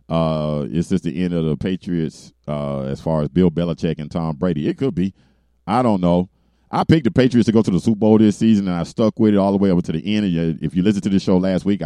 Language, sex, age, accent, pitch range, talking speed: English, male, 40-59, American, 80-115 Hz, 285 wpm